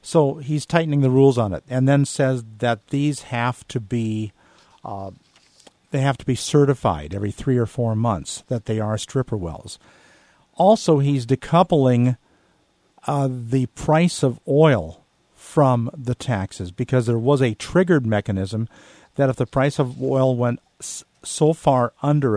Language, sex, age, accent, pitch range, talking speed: English, male, 50-69, American, 115-140 Hz, 155 wpm